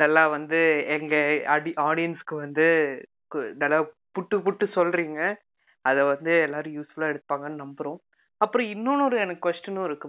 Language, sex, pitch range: Tamil, female, 155-195 Hz